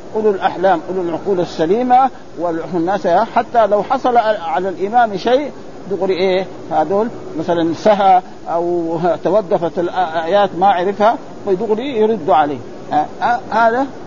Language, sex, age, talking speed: Arabic, male, 50-69, 120 wpm